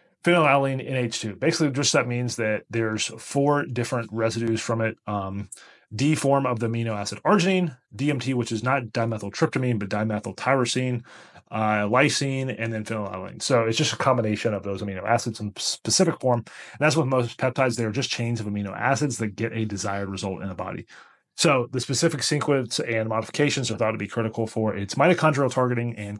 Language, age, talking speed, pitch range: English, 30-49, 185 wpm, 110-135 Hz